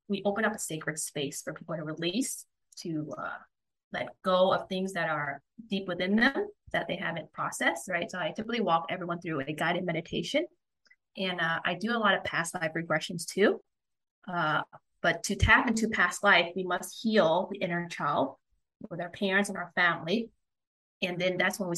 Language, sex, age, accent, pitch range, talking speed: English, female, 20-39, American, 165-200 Hz, 195 wpm